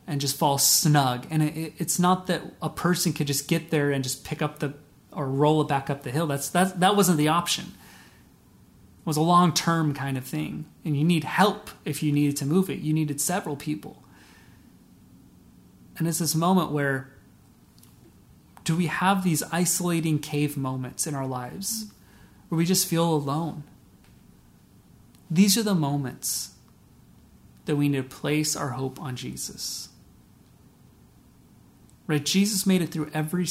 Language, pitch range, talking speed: English, 145-185 Hz, 165 wpm